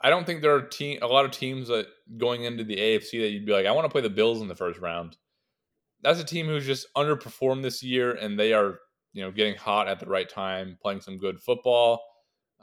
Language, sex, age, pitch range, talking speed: English, male, 20-39, 100-125 Hz, 250 wpm